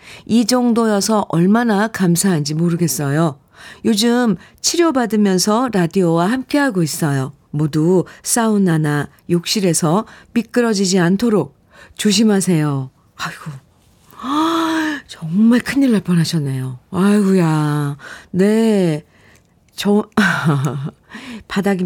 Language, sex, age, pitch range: Korean, female, 50-69, 150-210 Hz